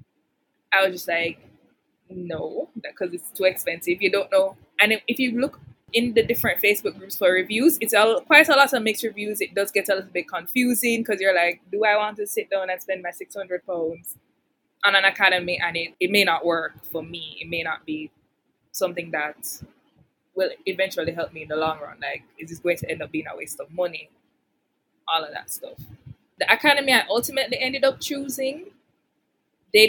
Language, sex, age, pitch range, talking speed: English, female, 20-39, 180-240 Hz, 200 wpm